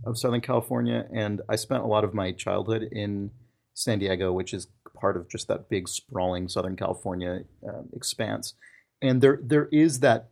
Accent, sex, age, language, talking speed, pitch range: American, male, 30-49, English, 180 wpm, 105-125 Hz